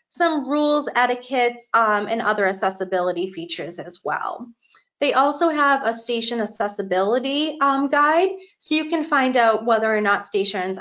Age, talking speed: 30-49, 145 wpm